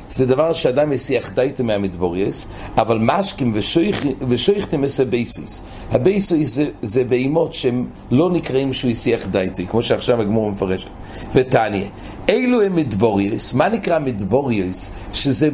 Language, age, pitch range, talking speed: English, 60-79, 105-160 Hz, 125 wpm